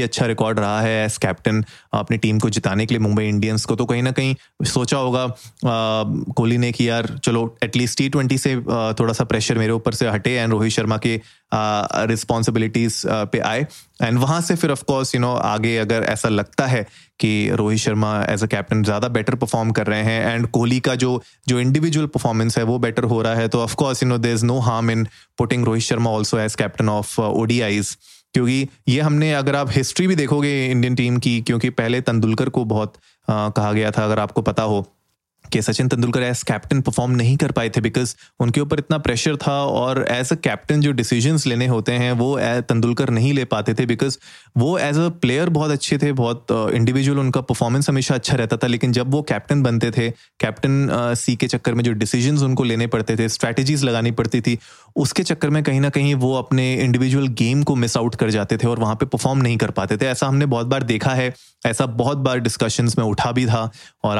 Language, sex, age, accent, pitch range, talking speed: Hindi, male, 20-39, native, 115-135 Hz, 215 wpm